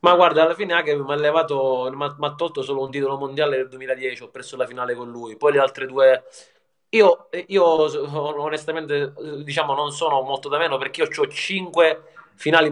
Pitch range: 130-155 Hz